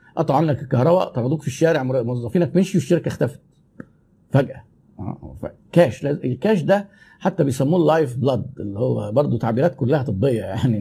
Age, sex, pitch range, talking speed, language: 50-69, male, 120-170 Hz, 140 wpm, Arabic